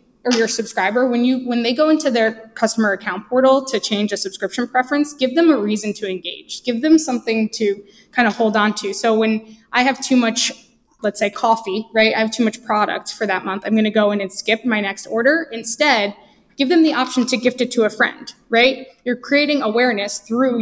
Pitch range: 210-250 Hz